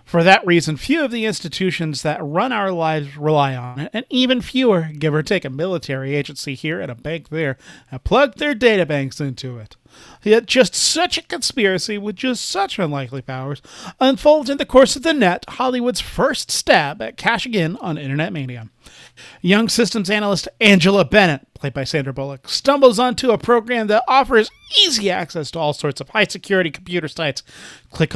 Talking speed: 185 wpm